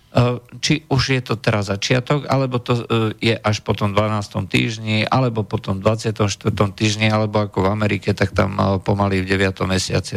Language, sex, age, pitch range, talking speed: Slovak, male, 50-69, 105-130 Hz, 190 wpm